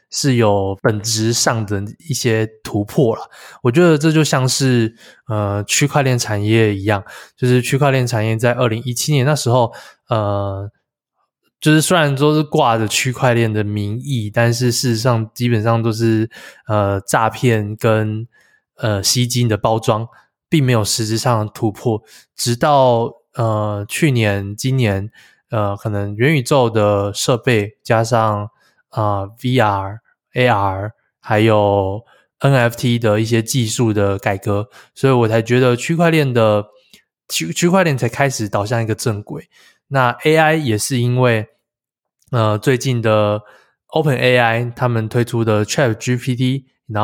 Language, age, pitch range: Chinese, 20-39, 105-130 Hz